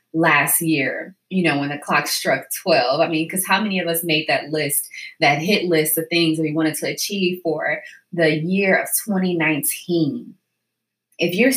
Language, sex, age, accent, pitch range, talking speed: English, female, 20-39, American, 160-185 Hz, 185 wpm